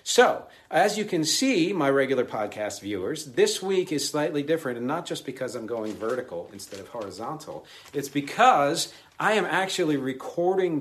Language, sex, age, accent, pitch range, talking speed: English, male, 50-69, American, 110-150 Hz, 165 wpm